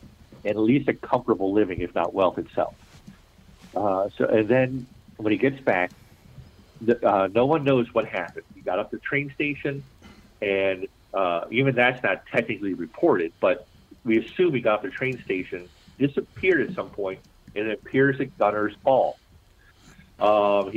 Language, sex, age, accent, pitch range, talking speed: English, male, 50-69, American, 95-125 Hz, 170 wpm